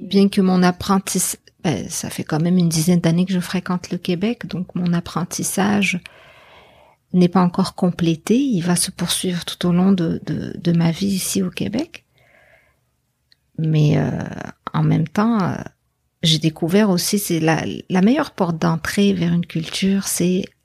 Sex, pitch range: female, 170-200 Hz